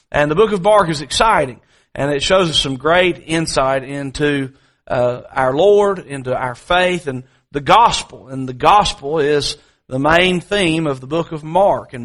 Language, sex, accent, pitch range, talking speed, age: English, male, American, 155-200 Hz, 185 wpm, 40-59